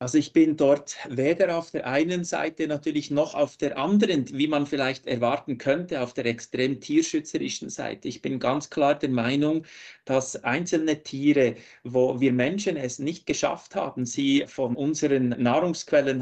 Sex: male